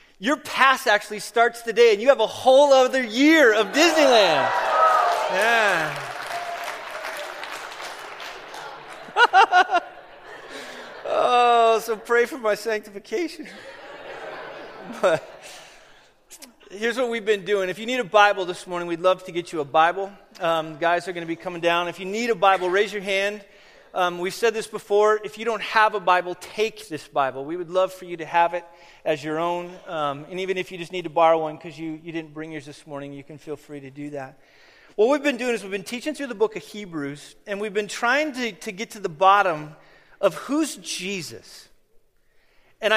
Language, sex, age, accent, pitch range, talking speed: English, male, 30-49, American, 175-235 Hz, 185 wpm